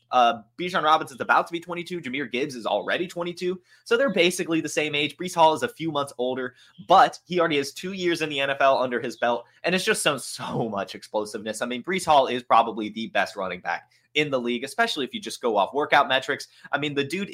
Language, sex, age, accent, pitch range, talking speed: English, male, 20-39, American, 140-210 Hz, 245 wpm